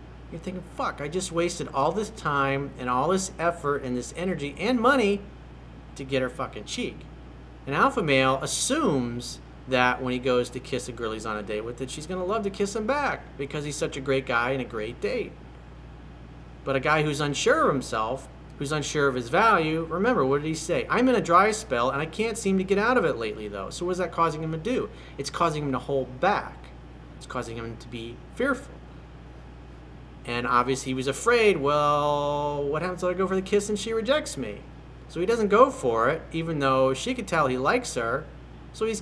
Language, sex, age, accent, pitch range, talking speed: English, male, 40-59, American, 115-175 Hz, 225 wpm